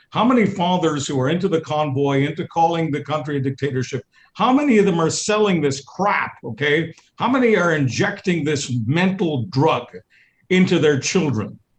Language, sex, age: English, male, 50-69